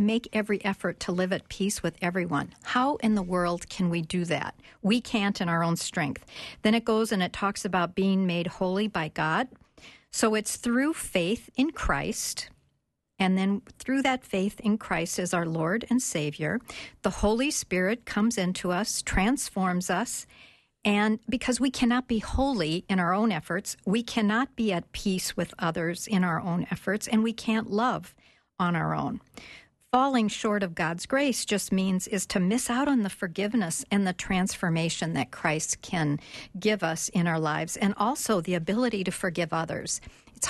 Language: English